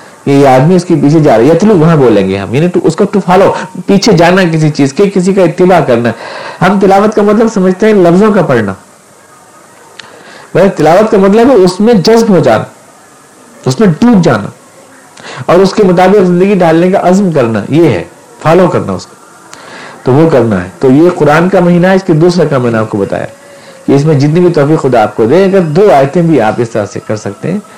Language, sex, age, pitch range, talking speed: Urdu, male, 50-69, 140-195 Hz, 200 wpm